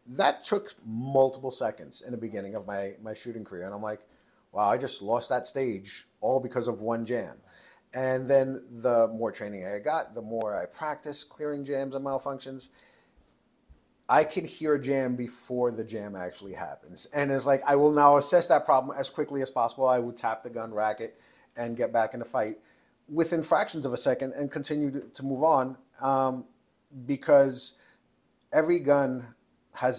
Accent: American